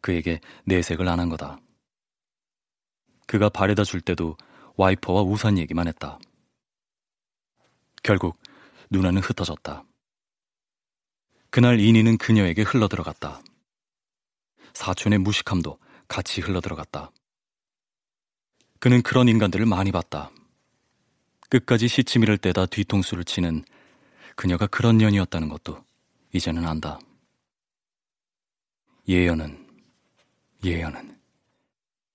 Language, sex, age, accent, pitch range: Korean, male, 30-49, native, 85-105 Hz